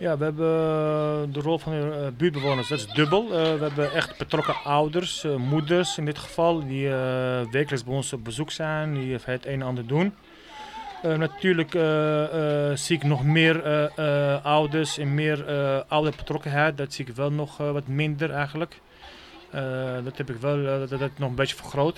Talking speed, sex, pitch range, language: 200 wpm, male, 135-155 Hz, Dutch